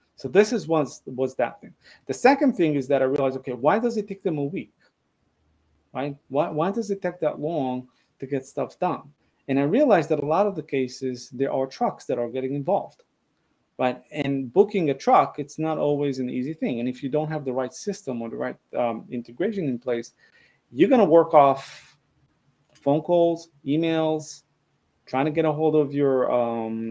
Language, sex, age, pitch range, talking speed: English, male, 30-49, 130-165 Hz, 205 wpm